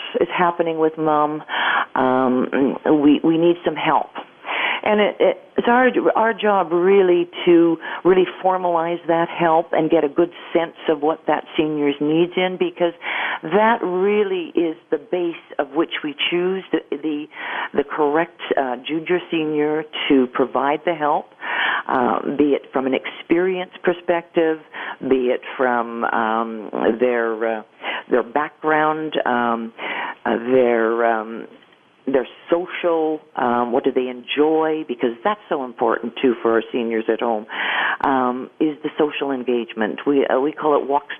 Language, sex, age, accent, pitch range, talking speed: English, female, 50-69, American, 130-170 Hz, 150 wpm